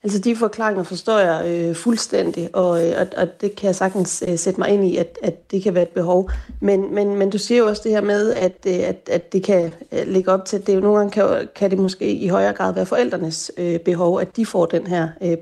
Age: 30-49